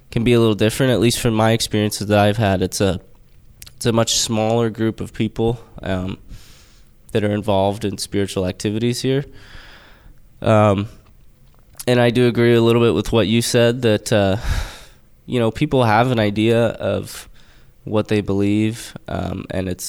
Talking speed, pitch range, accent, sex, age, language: 170 wpm, 100-115 Hz, American, male, 20-39, English